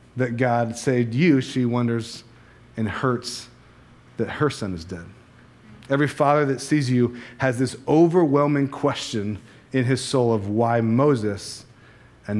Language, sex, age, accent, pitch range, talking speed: English, male, 30-49, American, 110-135 Hz, 140 wpm